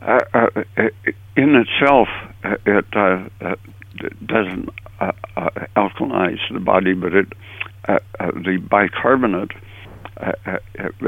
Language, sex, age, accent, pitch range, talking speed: English, male, 60-79, American, 95-105 Hz, 115 wpm